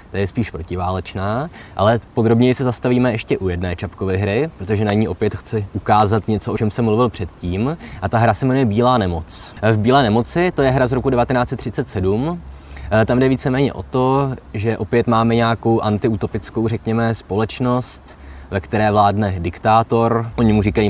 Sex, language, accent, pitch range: male, Czech, native, 100-115 Hz